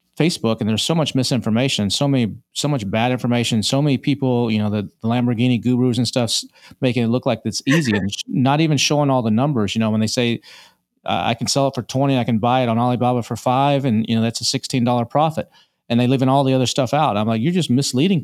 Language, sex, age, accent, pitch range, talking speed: English, male, 40-59, American, 110-135 Hz, 260 wpm